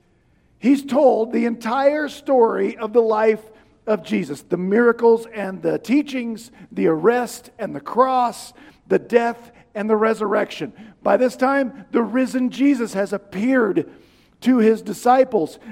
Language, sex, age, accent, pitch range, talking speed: English, male, 50-69, American, 225-285 Hz, 135 wpm